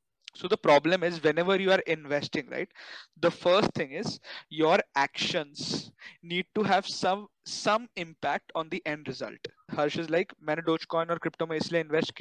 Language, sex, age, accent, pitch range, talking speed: Hindi, male, 20-39, native, 170-220 Hz, 180 wpm